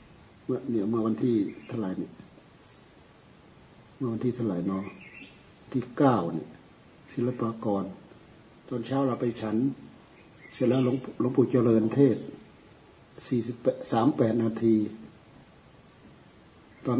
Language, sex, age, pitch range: Thai, male, 60-79, 110-135 Hz